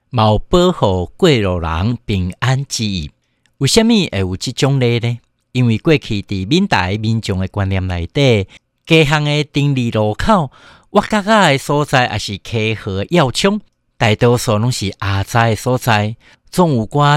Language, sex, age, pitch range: Chinese, male, 60-79, 100-135 Hz